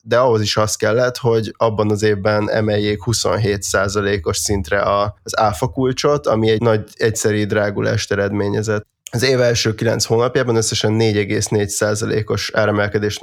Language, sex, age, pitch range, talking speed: Hungarian, male, 20-39, 105-115 Hz, 125 wpm